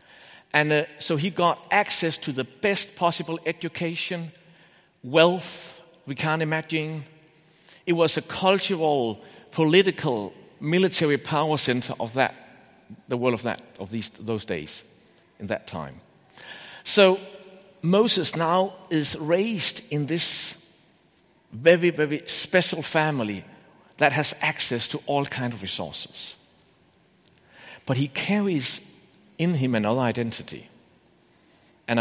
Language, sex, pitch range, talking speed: English, male, 125-175 Hz, 120 wpm